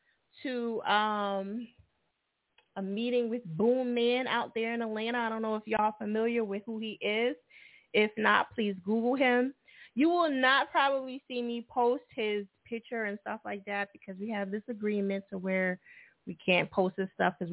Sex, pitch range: female, 180-235 Hz